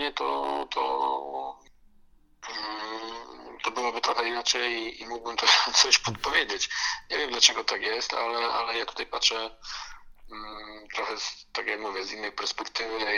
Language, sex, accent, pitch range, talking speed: Polish, male, native, 95-120 Hz, 130 wpm